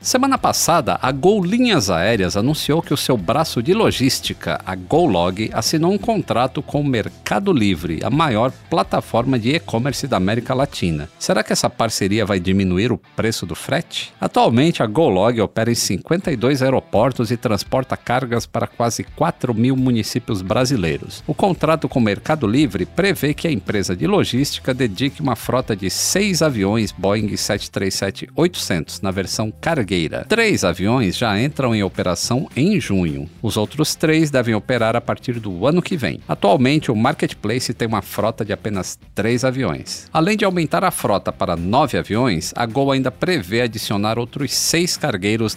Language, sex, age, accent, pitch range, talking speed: Portuguese, male, 50-69, Brazilian, 105-140 Hz, 165 wpm